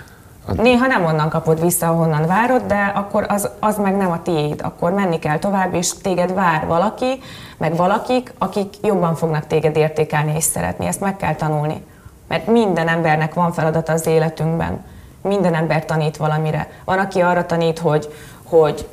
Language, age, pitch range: Hungarian, 20-39, 155-180 Hz